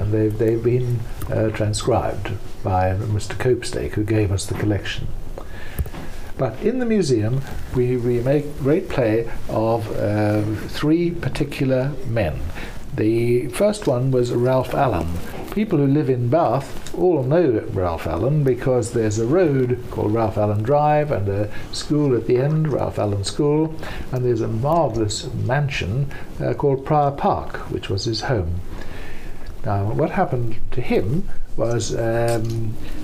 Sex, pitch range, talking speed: male, 110-135 Hz, 145 wpm